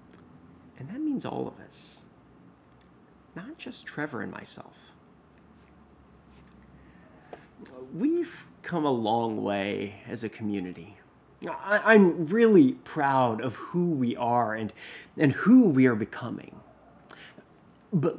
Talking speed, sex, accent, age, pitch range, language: 110 wpm, male, American, 30-49, 120-190 Hz, English